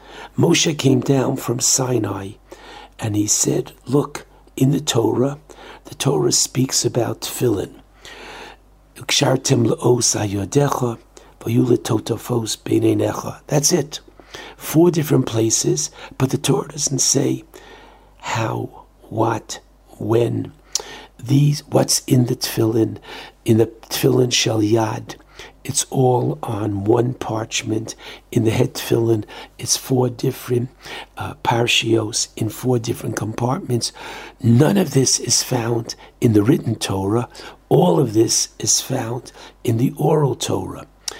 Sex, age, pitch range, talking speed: male, 60-79, 115-140 Hz, 110 wpm